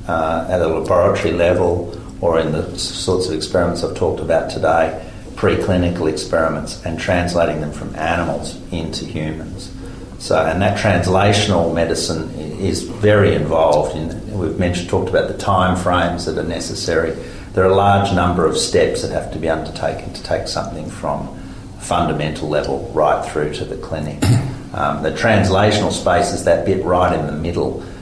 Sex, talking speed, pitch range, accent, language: male, 165 wpm, 80-95 Hz, Australian, English